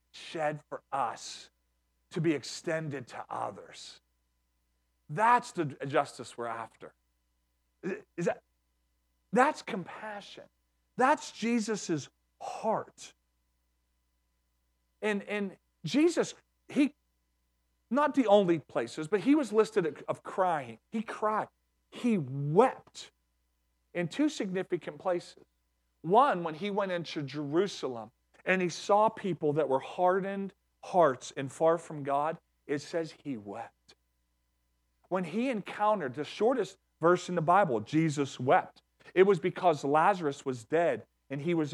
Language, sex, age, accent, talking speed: English, male, 40-59, American, 120 wpm